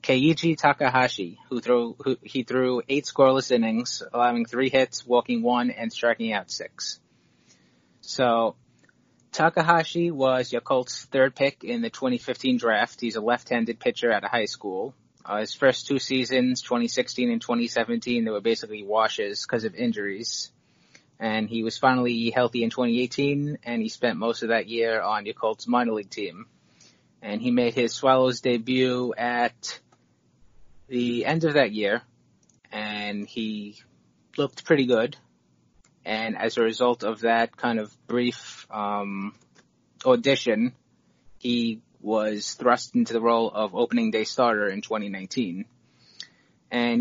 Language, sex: English, male